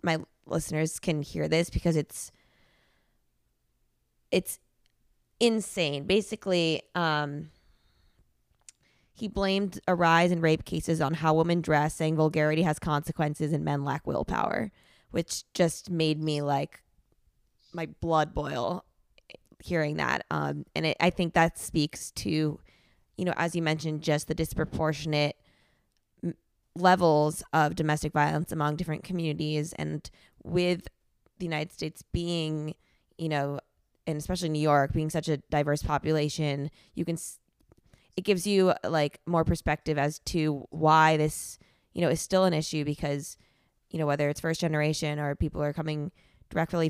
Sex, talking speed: female, 140 wpm